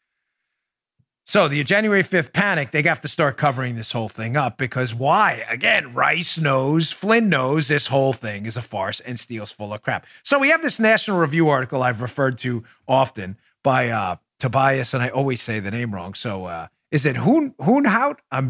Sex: male